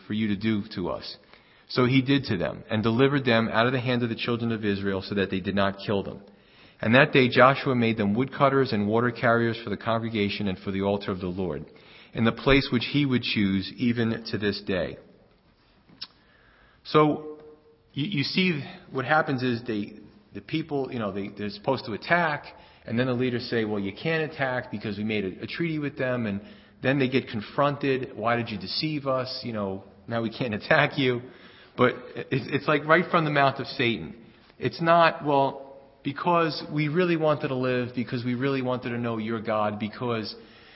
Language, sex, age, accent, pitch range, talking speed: English, male, 40-59, American, 110-145 Hz, 205 wpm